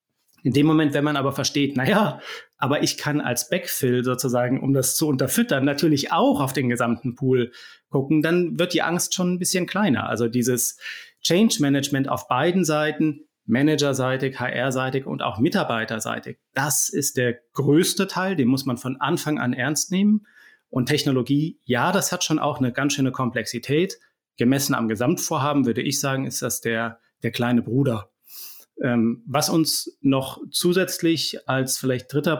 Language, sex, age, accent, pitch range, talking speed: German, male, 30-49, German, 125-155 Hz, 165 wpm